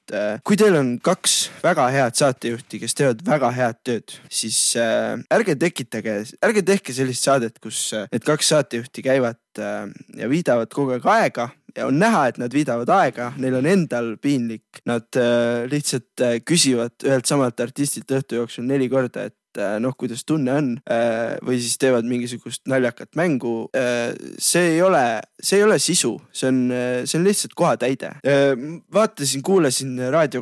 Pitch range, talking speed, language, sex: 120-140 Hz, 150 wpm, English, male